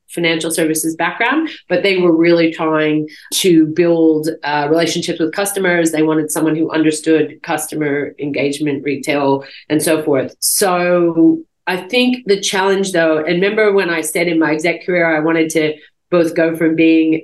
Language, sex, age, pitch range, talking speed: English, female, 30-49, 150-170 Hz, 165 wpm